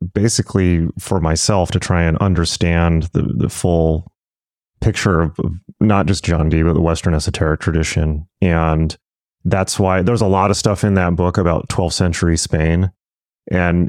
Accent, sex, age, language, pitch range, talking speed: American, male, 30-49, English, 85-105 Hz, 160 wpm